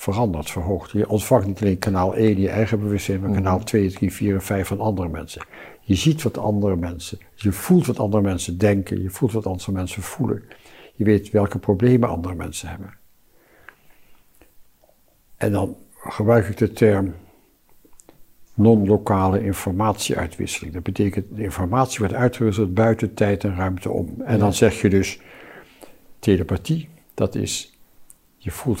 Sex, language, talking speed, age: male, Dutch, 155 wpm, 60-79